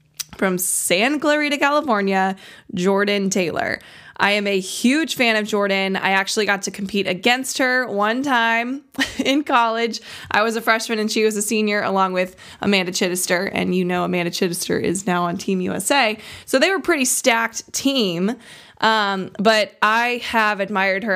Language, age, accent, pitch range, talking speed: English, 20-39, American, 190-235 Hz, 165 wpm